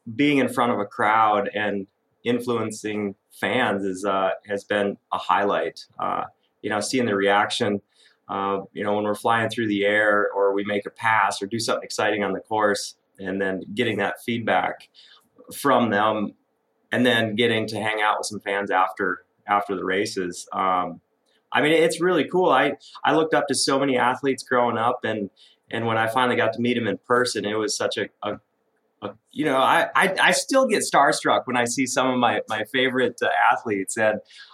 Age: 30-49